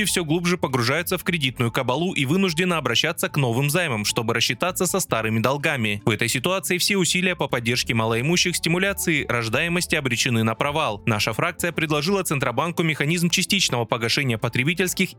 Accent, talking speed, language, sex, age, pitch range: native, 150 wpm, Russian, male, 20-39, 125-180 Hz